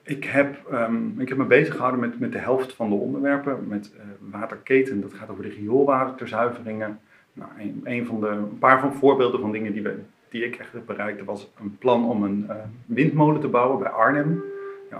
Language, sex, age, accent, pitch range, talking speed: Dutch, male, 40-59, Dutch, 110-130 Hz, 210 wpm